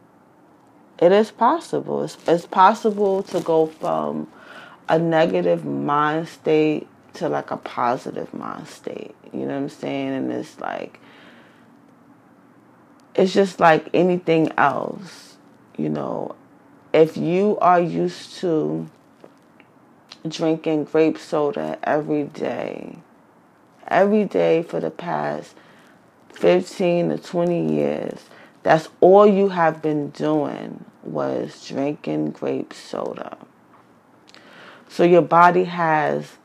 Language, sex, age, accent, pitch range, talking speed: English, female, 30-49, American, 140-175 Hz, 110 wpm